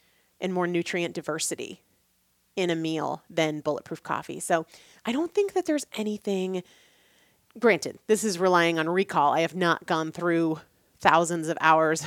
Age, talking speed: 30-49, 155 wpm